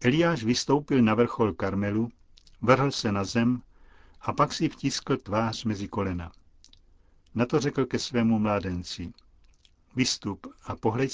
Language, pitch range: Czech, 85-125 Hz